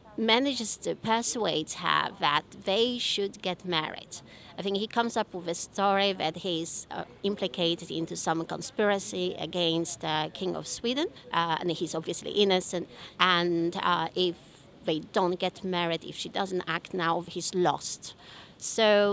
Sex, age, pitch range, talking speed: female, 30-49, 170-210 Hz, 155 wpm